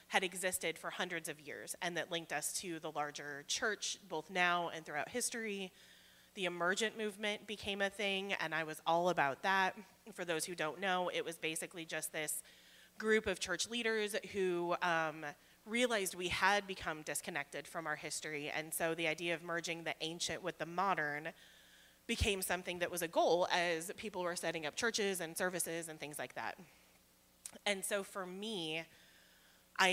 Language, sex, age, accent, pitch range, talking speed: English, female, 30-49, American, 160-195 Hz, 180 wpm